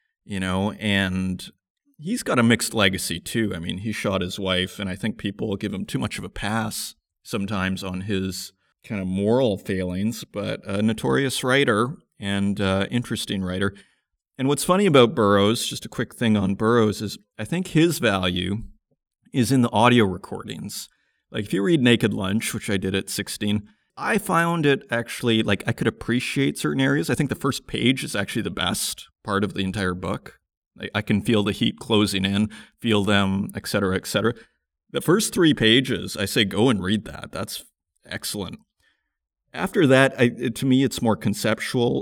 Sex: male